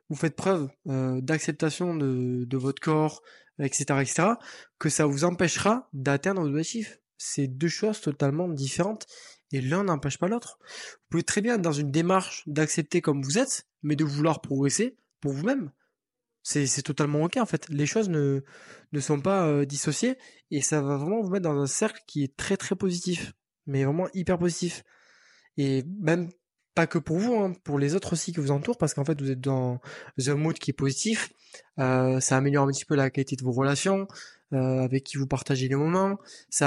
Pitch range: 140-185 Hz